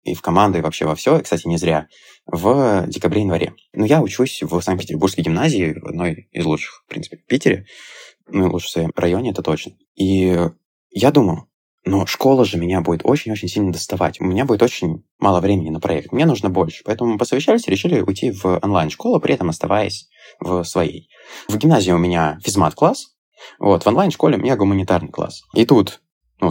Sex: male